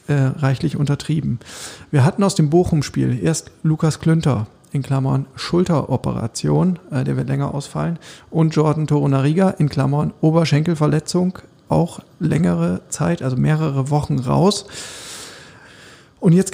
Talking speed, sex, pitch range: 125 wpm, male, 140-165 Hz